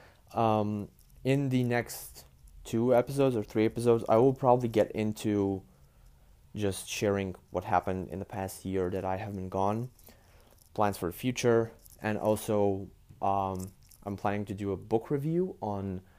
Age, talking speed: 20-39, 155 wpm